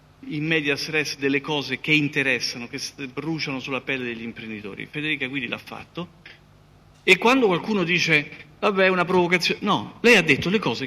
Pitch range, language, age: 125-165 Hz, Italian, 50-69